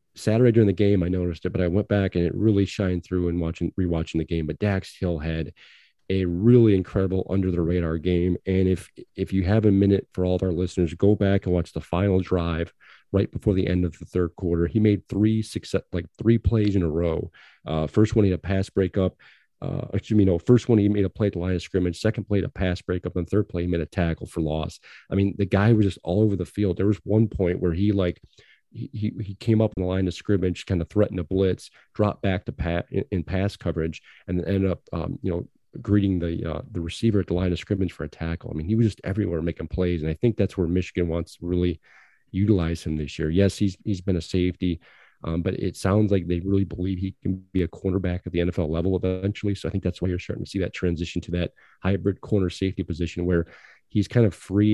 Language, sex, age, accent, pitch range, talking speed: English, male, 40-59, American, 85-100 Hz, 250 wpm